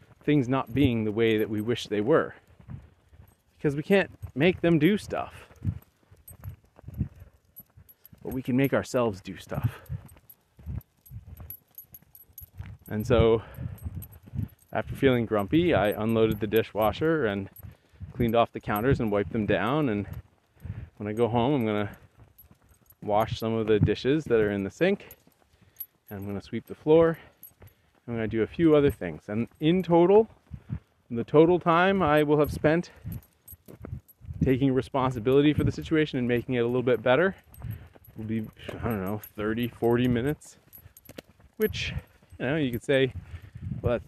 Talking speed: 150 wpm